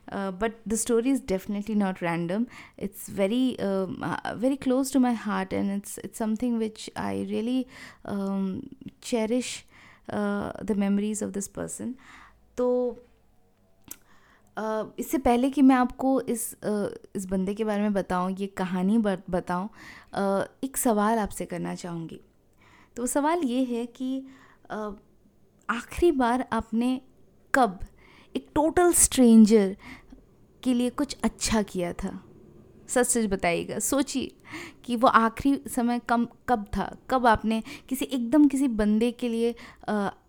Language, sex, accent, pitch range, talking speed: Hindi, female, native, 200-245 Hz, 130 wpm